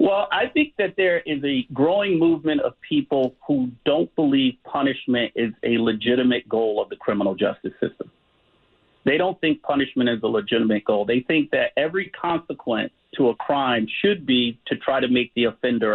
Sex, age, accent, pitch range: male, 50-69, American, 120-160 Hz